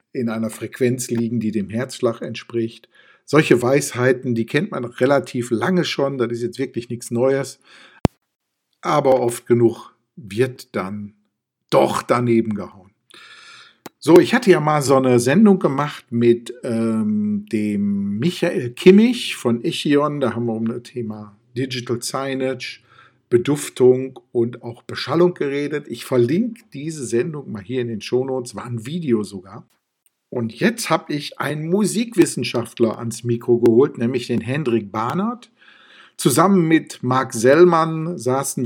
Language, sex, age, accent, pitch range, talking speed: German, male, 50-69, German, 120-160 Hz, 140 wpm